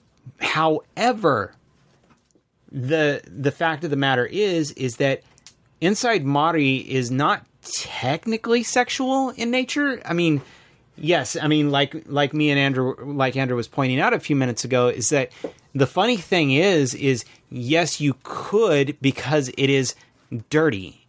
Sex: male